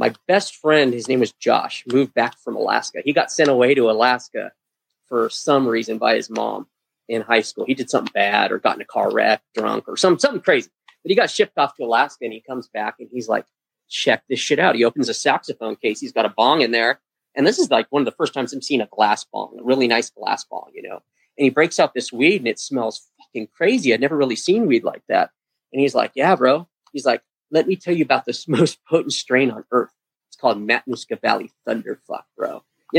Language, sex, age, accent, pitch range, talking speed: English, male, 30-49, American, 120-150 Hz, 245 wpm